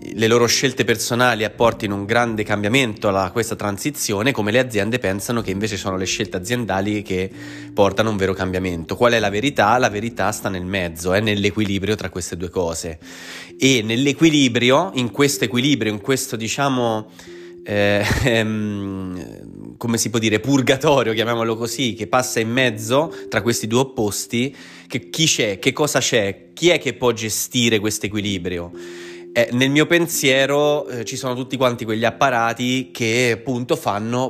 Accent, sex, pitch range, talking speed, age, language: native, male, 100-130 Hz, 165 wpm, 30-49, Italian